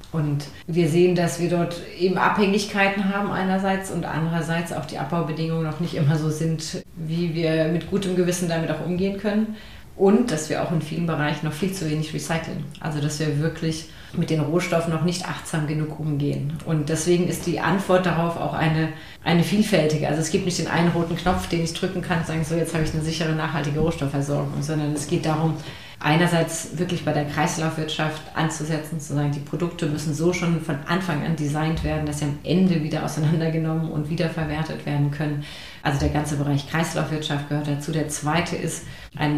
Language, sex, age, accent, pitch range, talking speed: German, female, 30-49, German, 150-170 Hz, 195 wpm